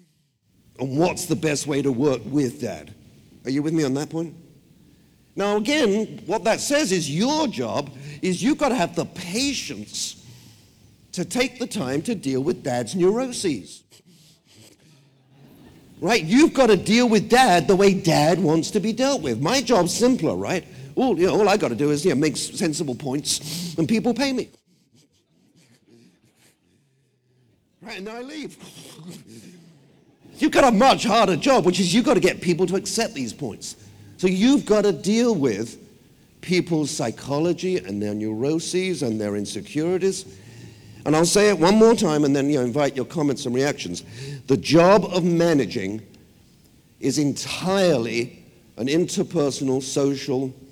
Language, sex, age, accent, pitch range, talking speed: English, male, 50-69, British, 130-190 Hz, 160 wpm